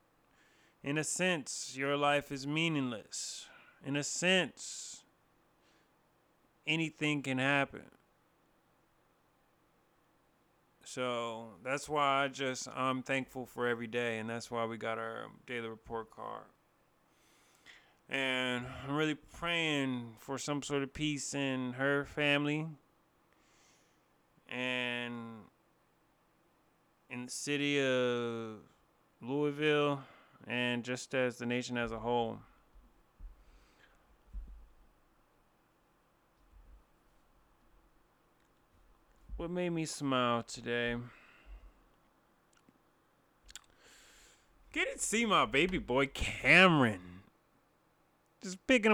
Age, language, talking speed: 30-49, English, 90 wpm